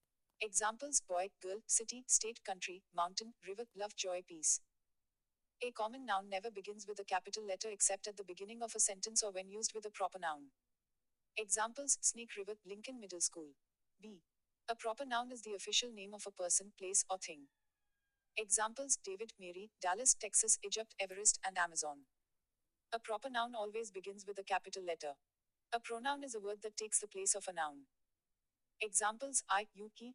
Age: 40-59